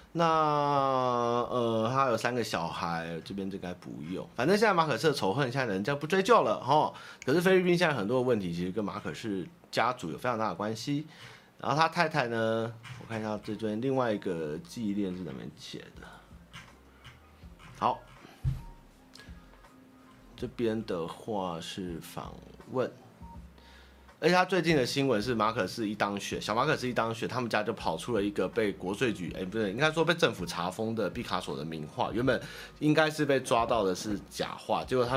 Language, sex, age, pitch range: Chinese, male, 30-49, 100-145 Hz